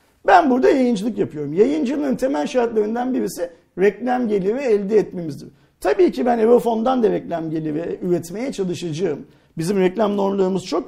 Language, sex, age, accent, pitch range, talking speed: Turkish, male, 50-69, native, 180-250 Hz, 140 wpm